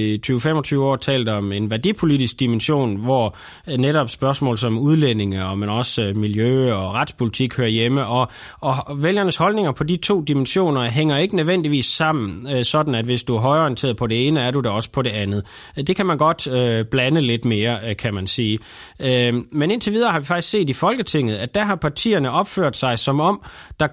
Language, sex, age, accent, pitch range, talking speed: Danish, male, 20-39, native, 120-155 Hz, 185 wpm